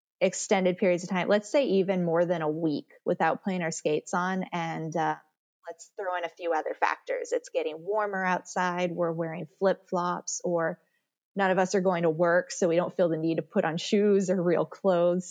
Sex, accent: female, American